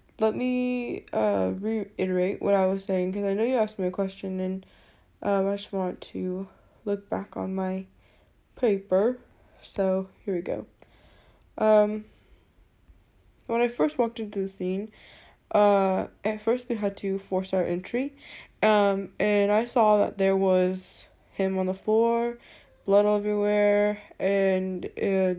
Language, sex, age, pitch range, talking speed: English, female, 10-29, 185-215 Hz, 150 wpm